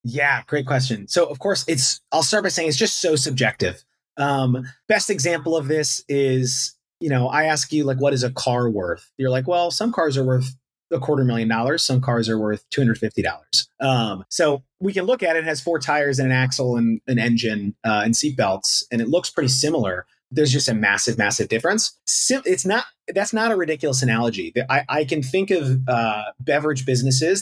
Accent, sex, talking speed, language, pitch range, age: American, male, 210 wpm, English, 115-150 Hz, 30-49